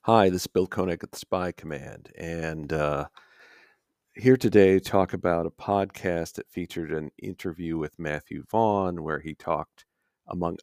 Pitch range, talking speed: 85-110 Hz, 165 wpm